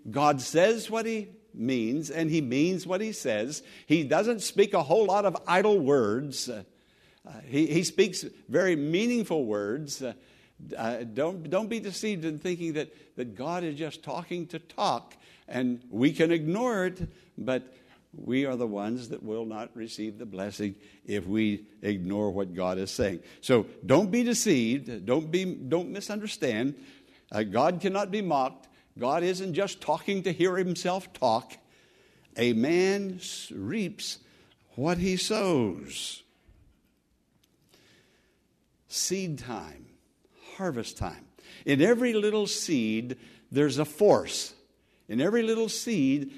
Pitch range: 135-200 Hz